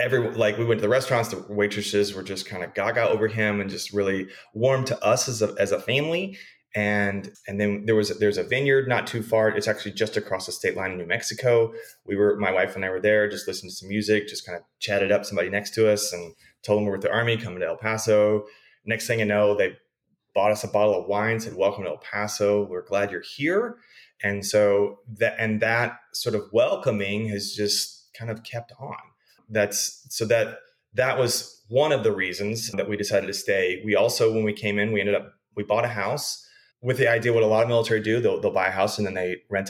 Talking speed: 245 wpm